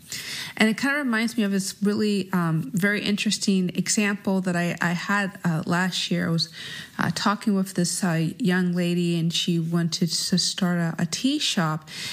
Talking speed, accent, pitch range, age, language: 190 wpm, American, 175-210 Hz, 30-49, English